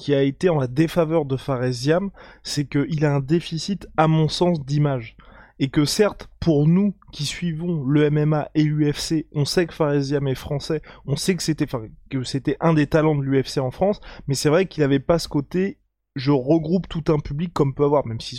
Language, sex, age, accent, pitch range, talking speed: French, male, 20-39, French, 135-165 Hz, 220 wpm